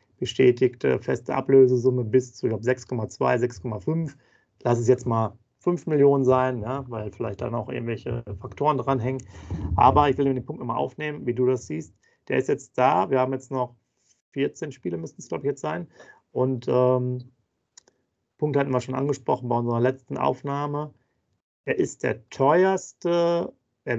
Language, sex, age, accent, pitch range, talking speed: German, male, 40-59, German, 125-145 Hz, 170 wpm